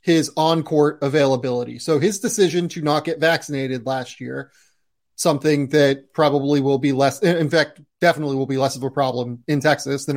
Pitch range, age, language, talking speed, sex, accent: 135-165 Hz, 30-49, English, 175 wpm, male, American